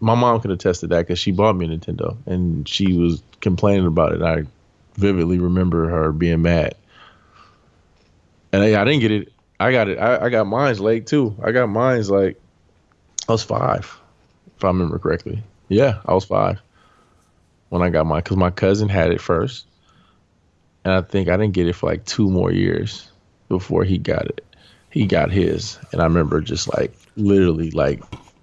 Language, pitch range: English, 85-105 Hz